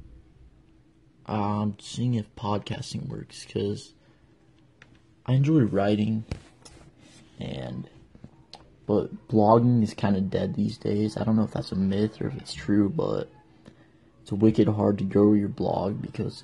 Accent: American